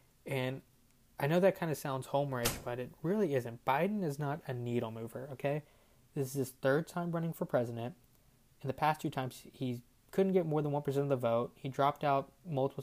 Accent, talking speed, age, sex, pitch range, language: American, 210 wpm, 20-39, male, 120-140 Hz, English